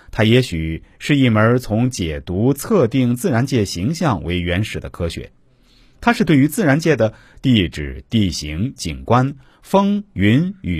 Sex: male